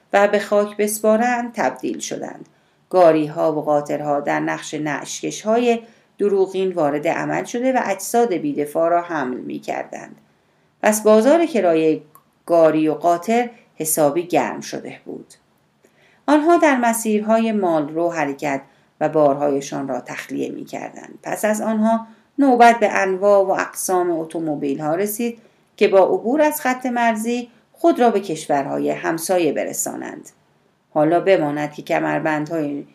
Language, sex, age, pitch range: Persian, female, 40-59, 155-230 Hz